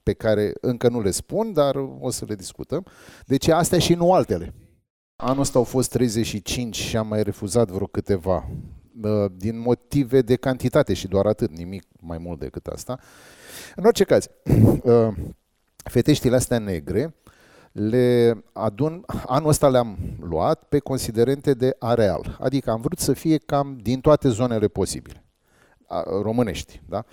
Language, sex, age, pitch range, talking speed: Romanian, male, 30-49, 100-130 Hz, 150 wpm